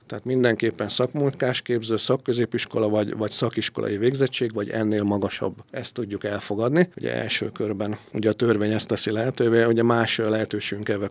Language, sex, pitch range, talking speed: Hungarian, male, 105-120 Hz, 150 wpm